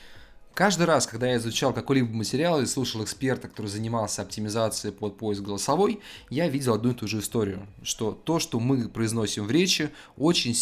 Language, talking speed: Russian, 175 wpm